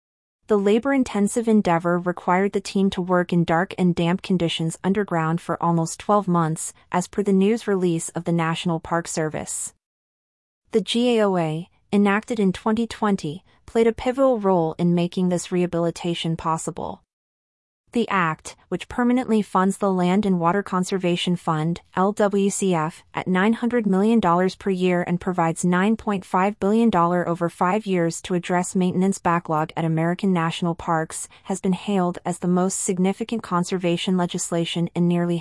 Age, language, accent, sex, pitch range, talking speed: 30-49, English, American, female, 170-205 Hz, 145 wpm